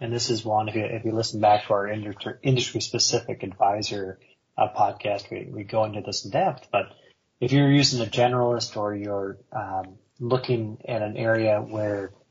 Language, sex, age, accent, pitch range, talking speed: English, male, 30-49, American, 105-125 Hz, 175 wpm